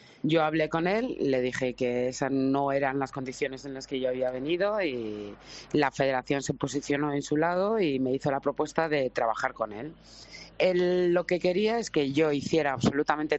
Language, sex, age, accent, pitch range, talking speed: Spanish, female, 30-49, Spanish, 140-160 Hz, 195 wpm